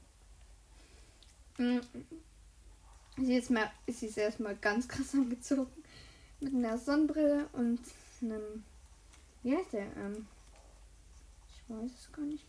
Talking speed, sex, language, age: 115 wpm, female, German, 10-29